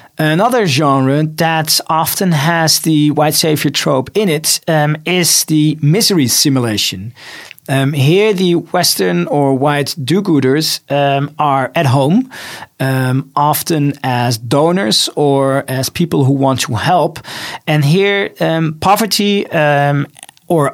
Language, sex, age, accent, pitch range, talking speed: English, male, 40-59, Dutch, 140-175 Hz, 125 wpm